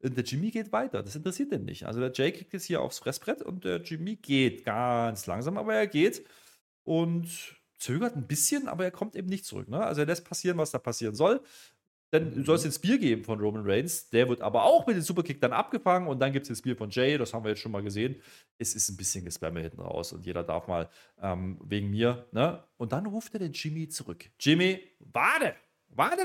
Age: 30-49